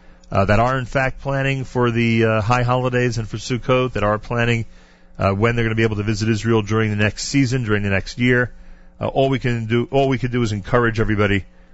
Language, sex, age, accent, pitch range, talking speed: English, male, 40-59, American, 95-120 Hz, 240 wpm